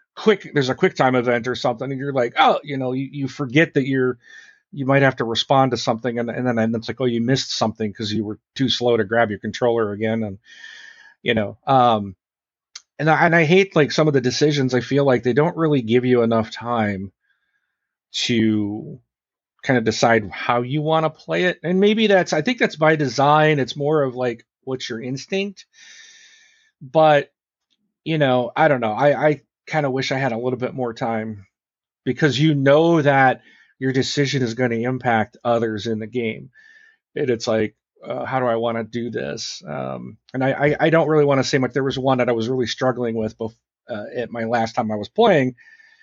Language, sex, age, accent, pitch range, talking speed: English, male, 40-59, American, 115-150 Hz, 215 wpm